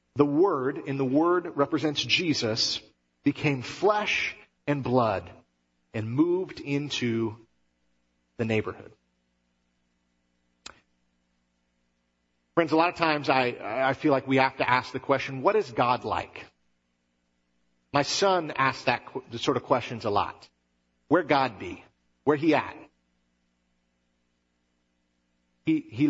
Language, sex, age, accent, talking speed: English, male, 40-59, American, 125 wpm